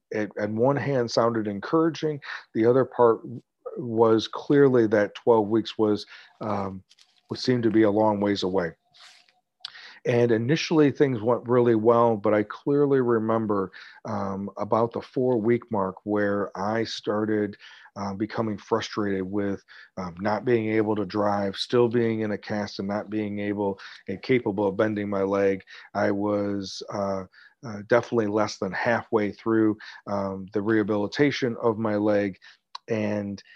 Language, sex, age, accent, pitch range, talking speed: English, male, 40-59, American, 100-115 Hz, 145 wpm